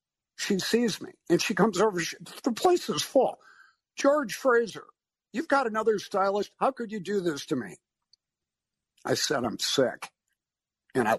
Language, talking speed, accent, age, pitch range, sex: English, 160 wpm, American, 60-79, 130-185 Hz, male